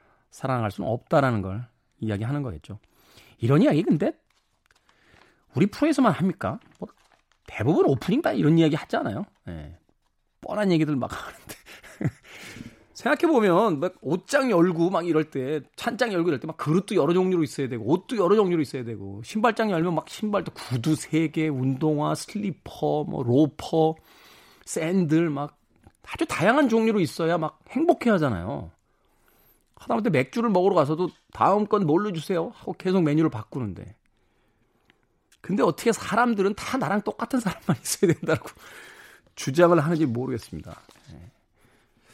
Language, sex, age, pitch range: Korean, male, 40-59, 115-185 Hz